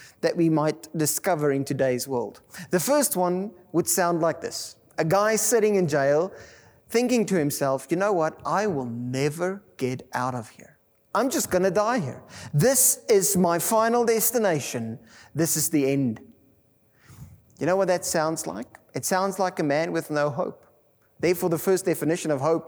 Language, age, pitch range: English, 30-49, 145-200 Hz